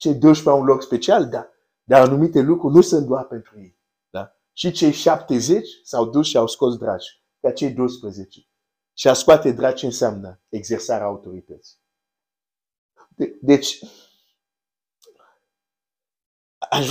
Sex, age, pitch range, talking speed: male, 50-69, 110-145 Hz, 140 wpm